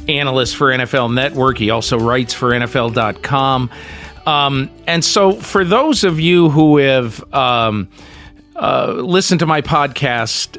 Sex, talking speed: male, 130 wpm